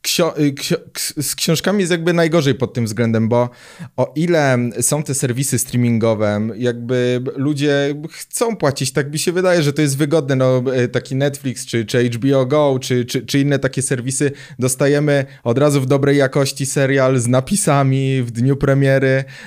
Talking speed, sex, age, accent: 160 wpm, male, 20-39, native